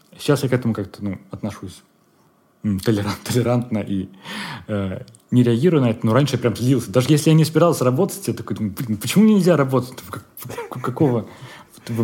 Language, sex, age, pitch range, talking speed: Russian, male, 30-49, 105-130 Hz, 160 wpm